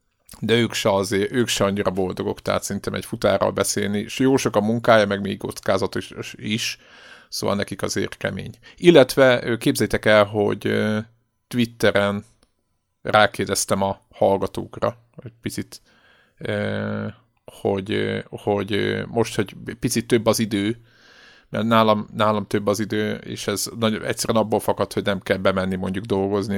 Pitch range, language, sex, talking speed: 100-115 Hz, Hungarian, male, 140 wpm